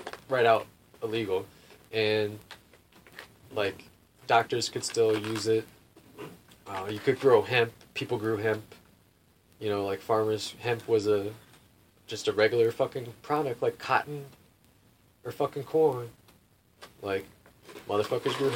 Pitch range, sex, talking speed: 105-145 Hz, male, 125 wpm